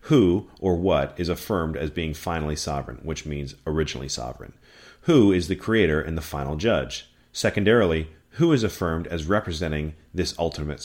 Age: 40-59